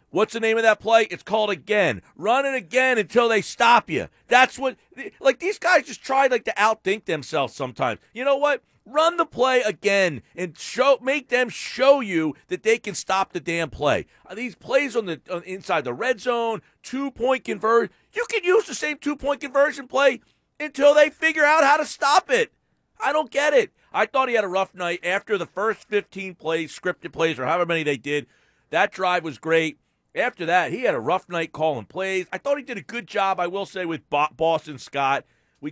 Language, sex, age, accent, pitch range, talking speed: English, male, 40-59, American, 150-240 Hz, 215 wpm